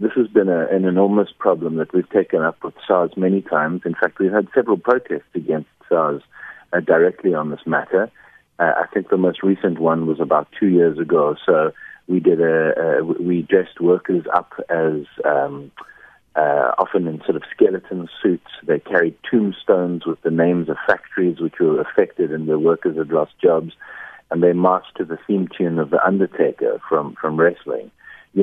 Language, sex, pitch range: English, male, 80-95 Hz